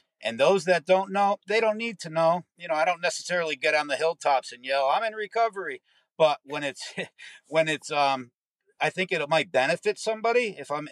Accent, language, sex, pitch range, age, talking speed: American, English, male, 120-170 Hz, 50-69, 210 wpm